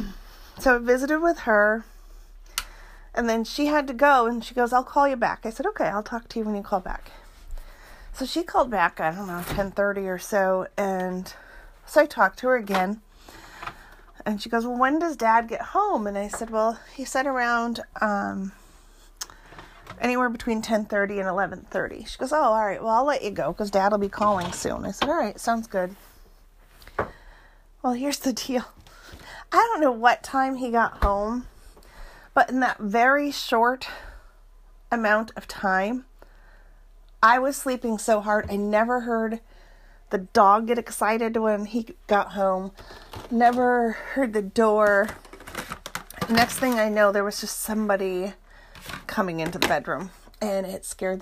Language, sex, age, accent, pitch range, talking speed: English, female, 40-59, American, 200-255 Hz, 170 wpm